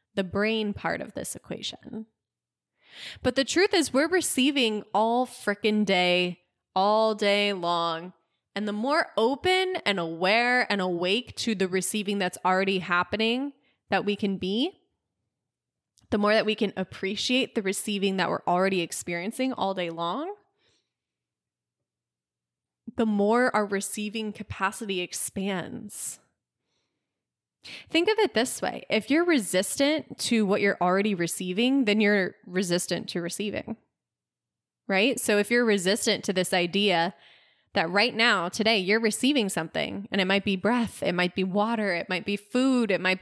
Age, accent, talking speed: 20-39, American, 145 wpm